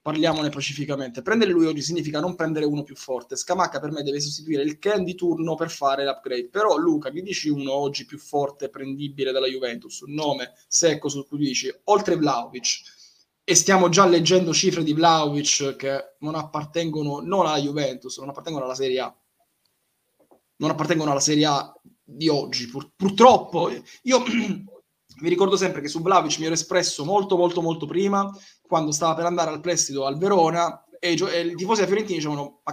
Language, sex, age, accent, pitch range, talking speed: Italian, male, 20-39, native, 145-185 Hz, 180 wpm